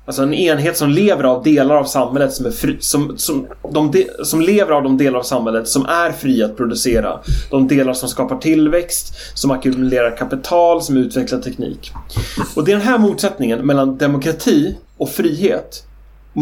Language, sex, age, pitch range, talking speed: English, male, 30-49, 130-180 Hz, 185 wpm